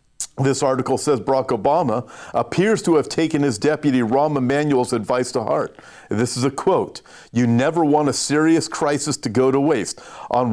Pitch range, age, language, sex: 130-180 Hz, 50-69, English, male